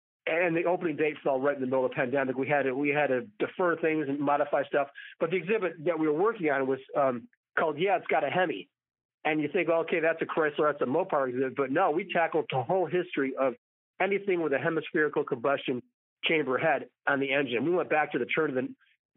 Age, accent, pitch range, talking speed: 40-59, American, 140-175 Hz, 240 wpm